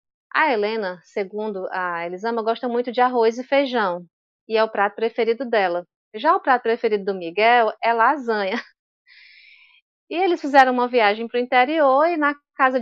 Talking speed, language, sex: 170 wpm, Portuguese, female